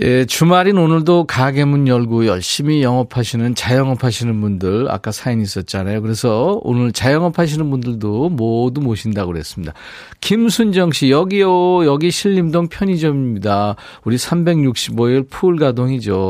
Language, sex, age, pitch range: Korean, male, 40-59, 120-160 Hz